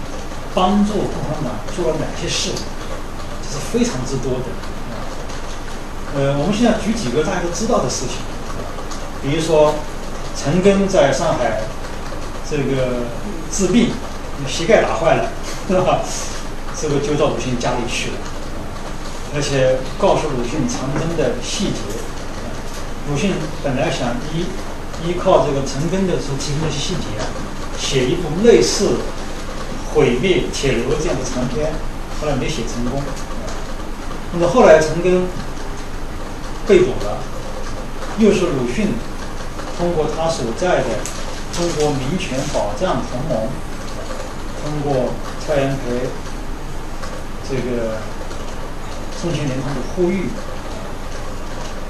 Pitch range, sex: 125-175 Hz, male